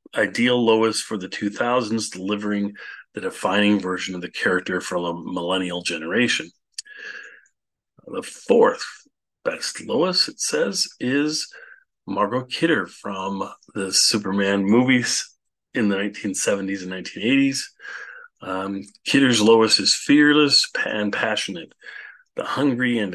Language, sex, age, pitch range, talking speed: English, male, 40-59, 95-125 Hz, 115 wpm